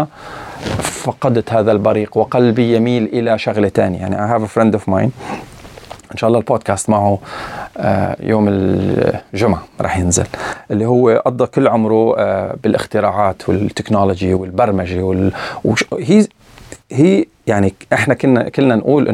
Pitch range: 105-135 Hz